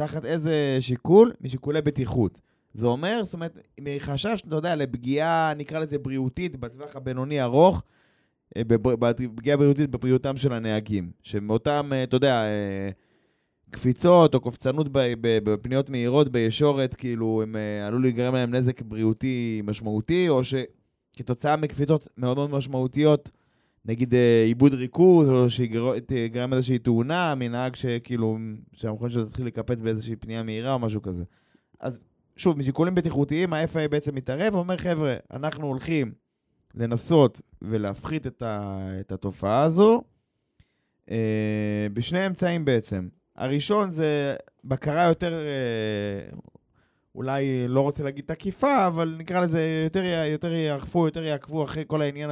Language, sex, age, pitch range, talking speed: Hebrew, male, 20-39, 115-155 Hz, 125 wpm